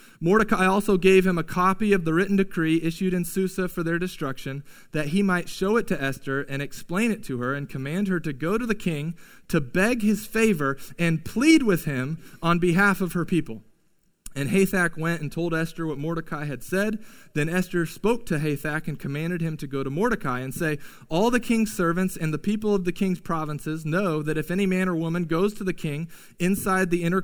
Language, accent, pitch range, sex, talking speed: English, American, 155-195 Hz, male, 215 wpm